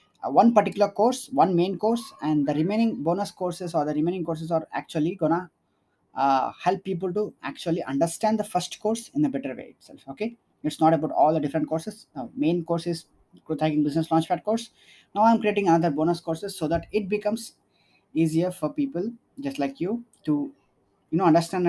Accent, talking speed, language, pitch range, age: Indian, 195 wpm, English, 155-200 Hz, 20-39